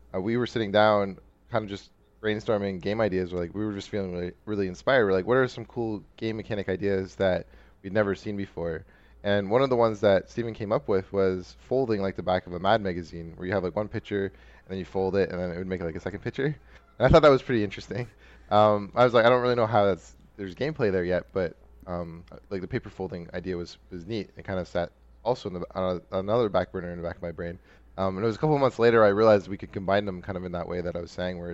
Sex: male